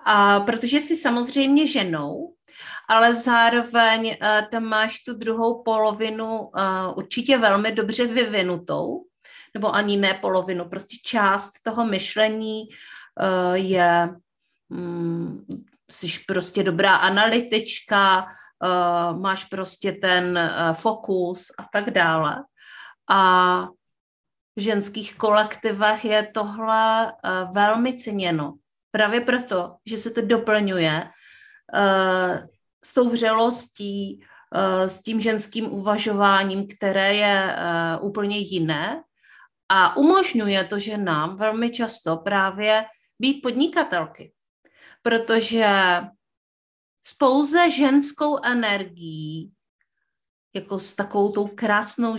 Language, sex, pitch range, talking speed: Czech, female, 190-230 Hz, 100 wpm